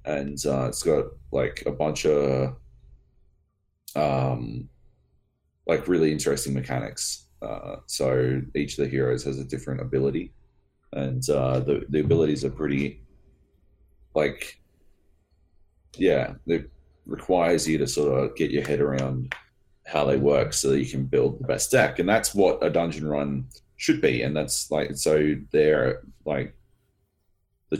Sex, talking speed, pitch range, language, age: male, 145 wpm, 65-80 Hz, English, 30-49